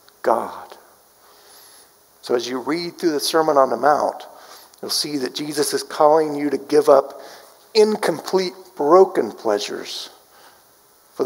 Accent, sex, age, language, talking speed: American, male, 50-69, English, 135 wpm